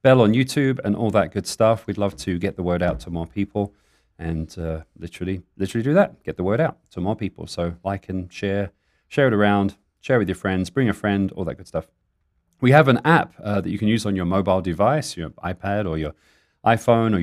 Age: 40-59